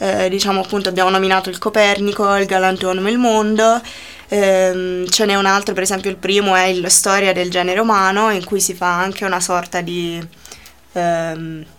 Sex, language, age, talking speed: female, Italian, 20-39, 180 wpm